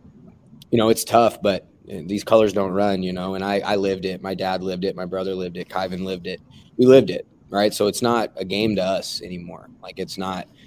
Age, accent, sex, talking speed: 20-39, American, male, 235 wpm